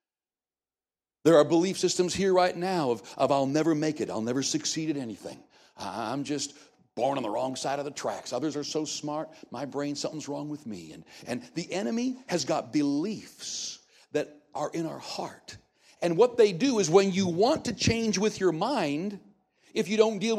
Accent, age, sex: American, 60-79, male